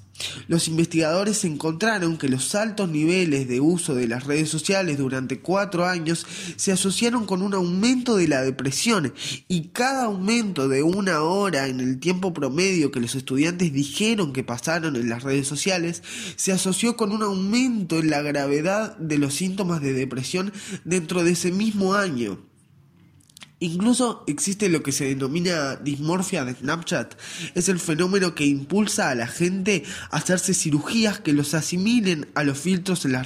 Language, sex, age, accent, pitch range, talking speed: Spanish, male, 20-39, Argentinian, 145-195 Hz, 160 wpm